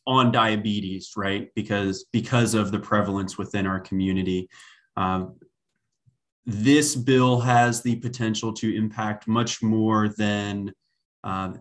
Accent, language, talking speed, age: American, English, 120 wpm, 20-39